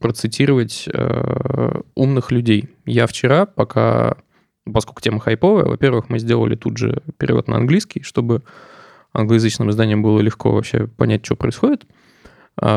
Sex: male